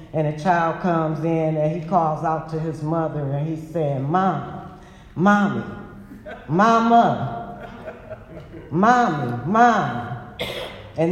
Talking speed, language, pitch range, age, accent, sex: 115 wpm, English, 160-200 Hz, 60-79, American, female